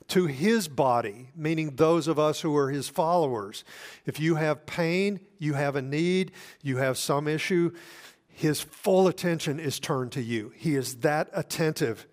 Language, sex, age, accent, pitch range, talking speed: English, male, 50-69, American, 125-160 Hz, 170 wpm